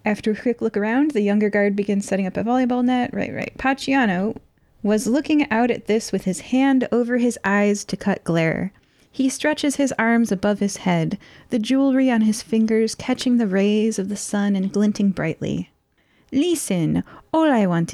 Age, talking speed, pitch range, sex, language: 30-49, 185 wpm, 200-250 Hz, female, English